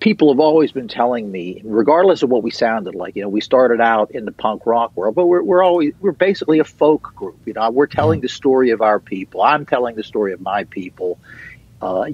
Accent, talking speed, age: American, 235 wpm, 50-69